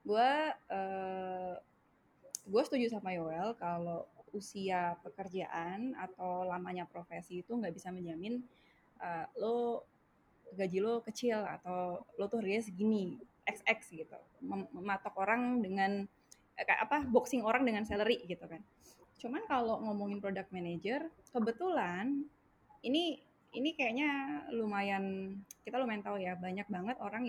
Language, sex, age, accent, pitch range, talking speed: Indonesian, female, 20-39, native, 195-240 Hz, 125 wpm